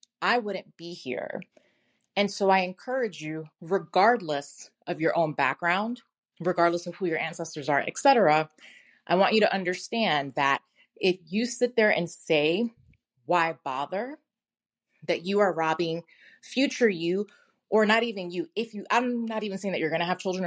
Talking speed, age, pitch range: 170 wpm, 20-39, 155-210 Hz